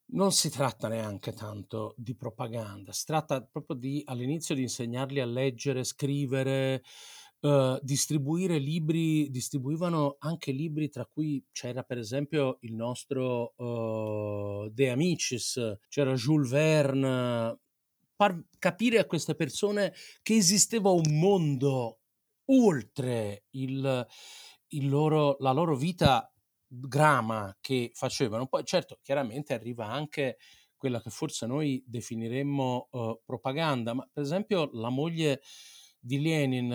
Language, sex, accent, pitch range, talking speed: Italian, male, native, 125-155 Hz, 110 wpm